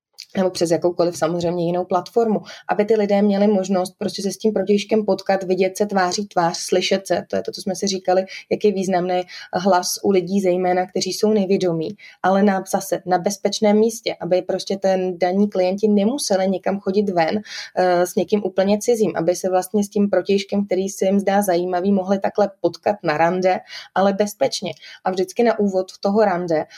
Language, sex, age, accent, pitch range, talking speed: Czech, female, 20-39, native, 180-200 Hz, 190 wpm